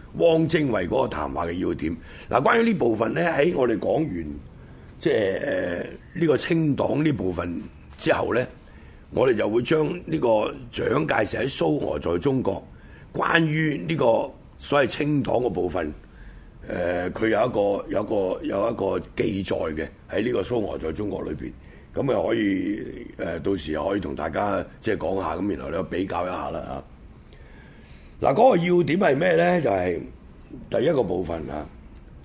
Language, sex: Chinese, male